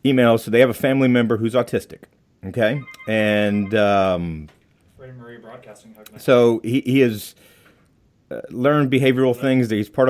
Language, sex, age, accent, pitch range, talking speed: English, male, 40-59, American, 95-115 Hz, 130 wpm